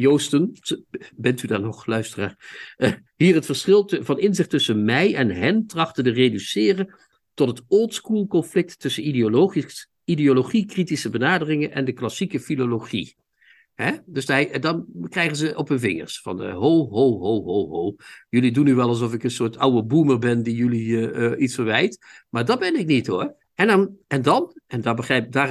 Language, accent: Dutch, Dutch